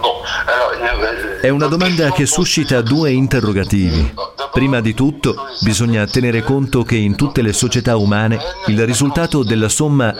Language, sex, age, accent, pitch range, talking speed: Italian, male, 50-69, native, 110-140 Hz, 135 wpm